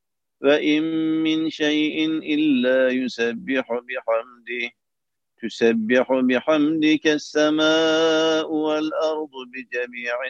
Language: Turkish